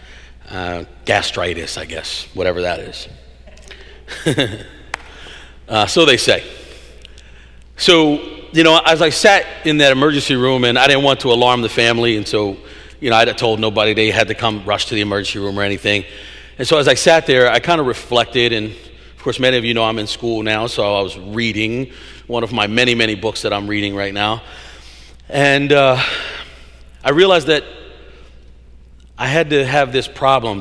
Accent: American